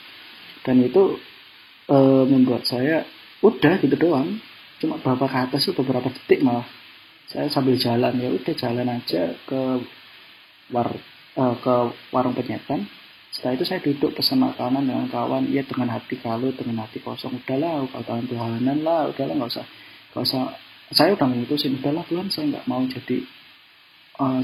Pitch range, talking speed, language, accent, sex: 125-145 Hz, 145 wpm, Indonesian, native, male